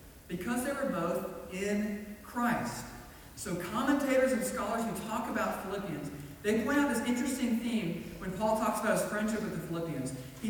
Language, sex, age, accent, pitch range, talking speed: English, male, 40-59, American, 165-220 Hz, 170 wpm